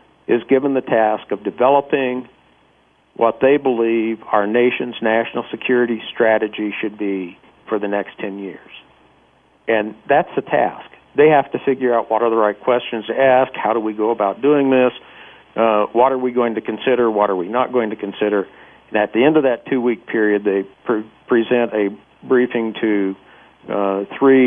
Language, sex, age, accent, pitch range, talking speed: English, male, 50-69, American, 110-130 Hz, 180 wpm